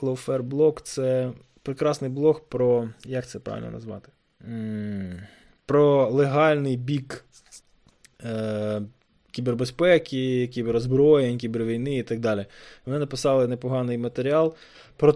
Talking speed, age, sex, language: 100 wpm, 20-39, male, Ukrainian